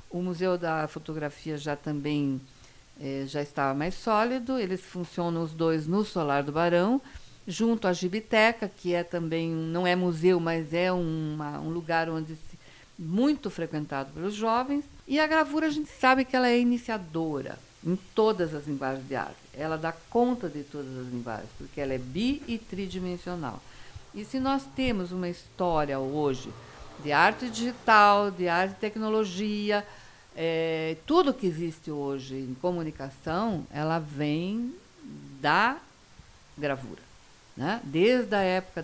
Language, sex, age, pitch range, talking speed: Portuguese, female, 60-79, 145-205 Hz, 150 wpm